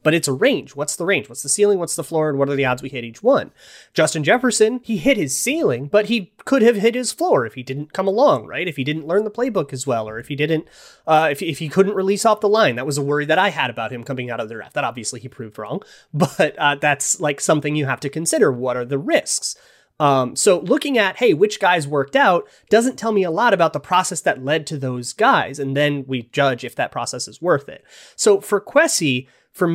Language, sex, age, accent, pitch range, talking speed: English, male, 30-49, American, 140-195 Hz, 265 wpm